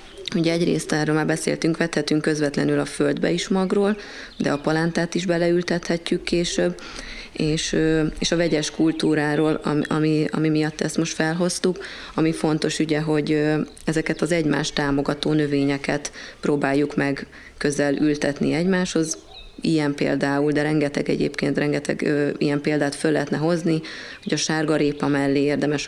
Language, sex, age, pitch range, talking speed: Hungarian, female, 30-49, 145-160 Hz, 140 wpm